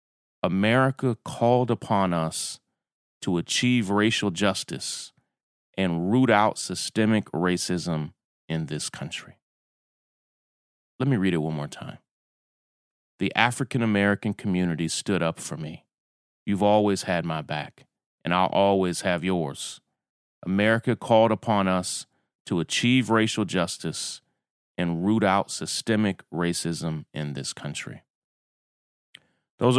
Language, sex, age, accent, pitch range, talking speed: English, male, 30-49, American, 90-115 Hz, 115 wpm